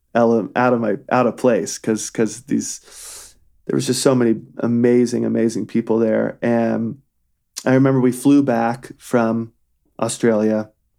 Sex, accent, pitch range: male, American, 110-125 Hz